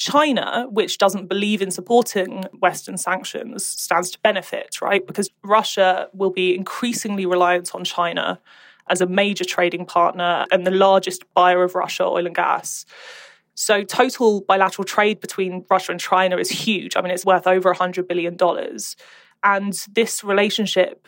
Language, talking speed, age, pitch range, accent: English, 155 wpm, 20-39, 185-210 Hz, British